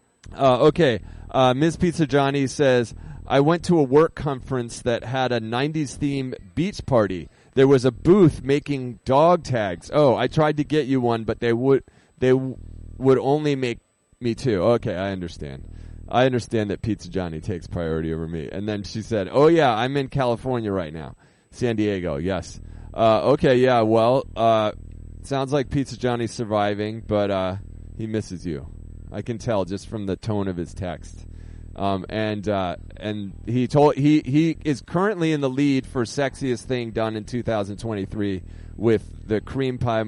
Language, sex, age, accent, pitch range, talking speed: English, male, 30-49, American, 95-130 Hz, 175 wpm